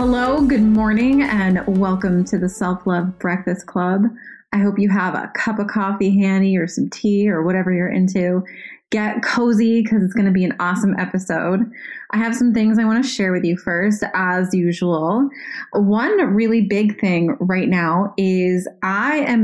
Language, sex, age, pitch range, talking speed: English, female, 20-39, 185-225 Hz, 180 wpm